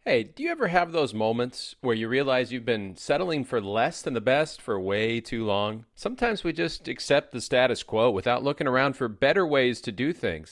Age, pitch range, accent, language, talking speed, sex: 40-59, 120-160 Hz, American, English, 215 wpm, male